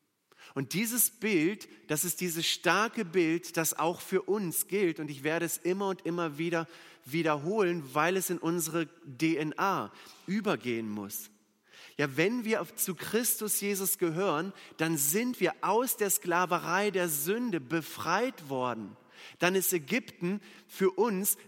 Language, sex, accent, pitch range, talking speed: German, male, German, 155-200 Hz, 140 wpm